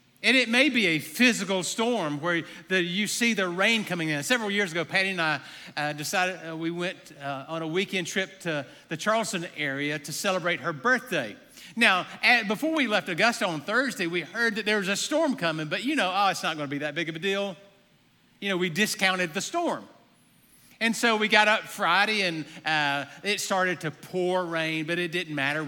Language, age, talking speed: English, 50-69, 210 wpm